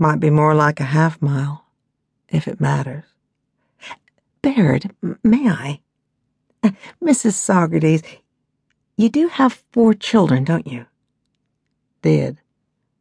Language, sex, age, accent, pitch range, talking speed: English, female, 60-79, American, 135-195 Hz, 100 wpm